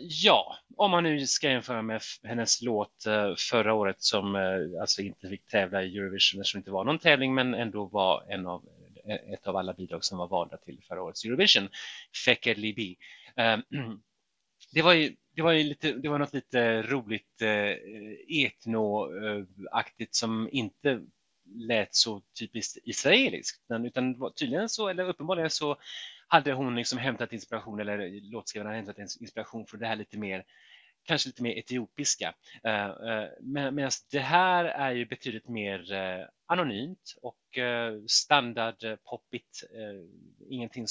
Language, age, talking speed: Swedish, 30-49, 150 wpm